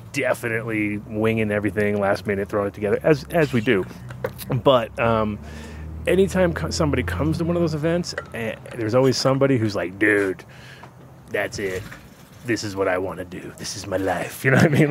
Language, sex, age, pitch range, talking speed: English, male, 30-49, 105-130 Hz, 195 wpm